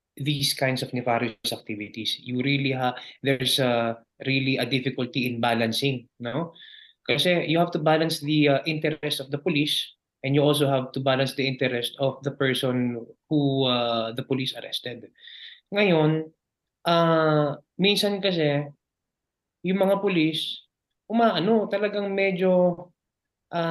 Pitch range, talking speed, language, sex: 125-165 Hz, 135 wpm, Filipino, male